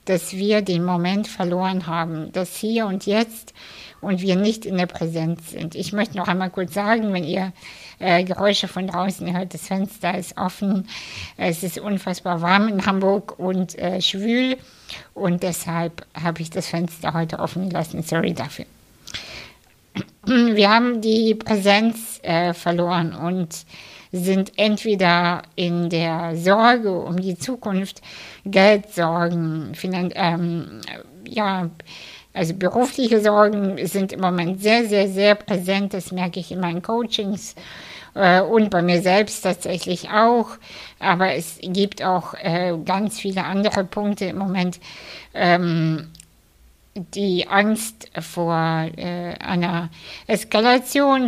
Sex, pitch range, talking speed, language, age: female, 175-205 Hz, 130 wpm, German, 60-79